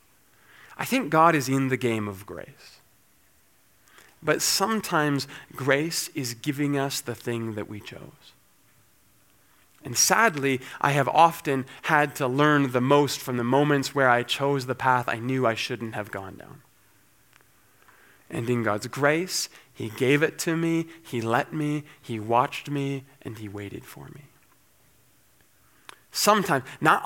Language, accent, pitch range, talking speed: English, American, 125-160 Hz, 150 wpm